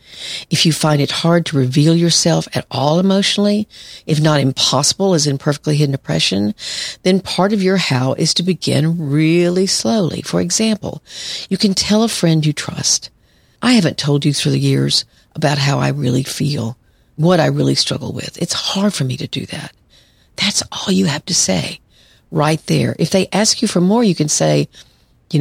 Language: English